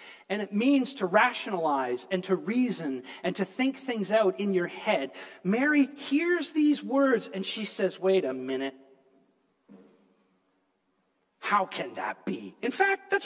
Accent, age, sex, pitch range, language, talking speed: American, 40-59, male, 195-280 Hz, English, 150 wpm